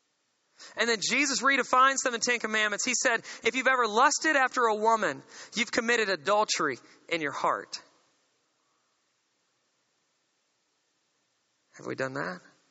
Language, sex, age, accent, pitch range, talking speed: English, male, 30-49, American, 200-265 Hz, 130 wpm